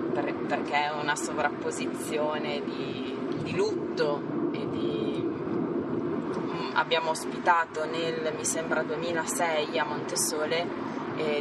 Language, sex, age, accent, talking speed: Italian, female, 20-39, native, 95 wpm